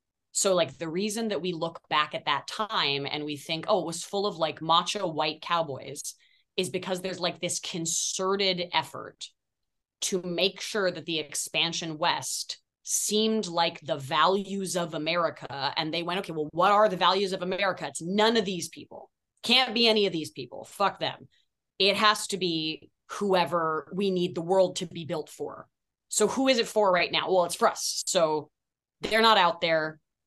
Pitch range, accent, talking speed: 155-195 Hz, American, 190 wpm